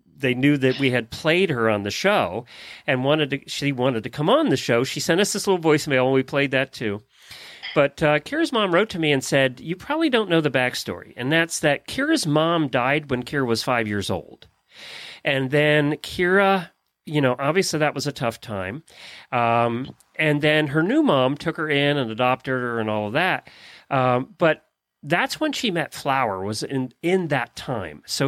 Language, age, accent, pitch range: English, 40-59, American, 125-170 Hz